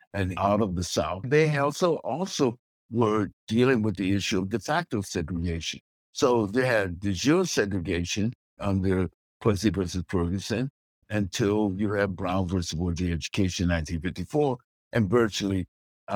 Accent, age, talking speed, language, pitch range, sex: American, 60-79, 135 wpm, English, 90-115 Hz, male